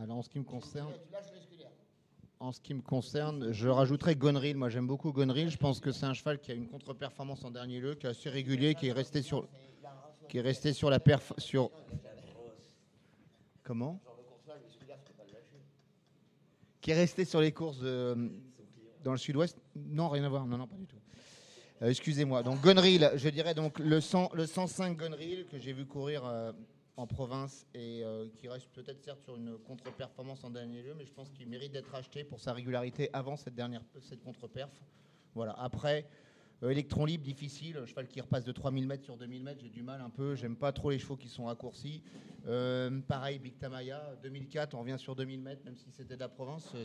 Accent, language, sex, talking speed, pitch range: French, French, male, 200 wpm, 125-145 Hz